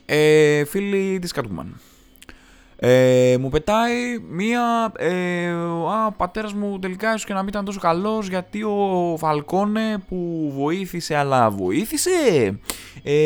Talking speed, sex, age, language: 125 wpm, male, 20-39, Greek